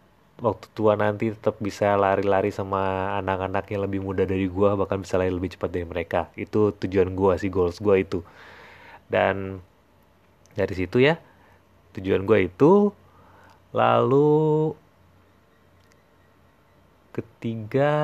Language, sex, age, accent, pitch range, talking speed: Indonesian, male, 30-49, native, 95-115 Hz, 115 wpm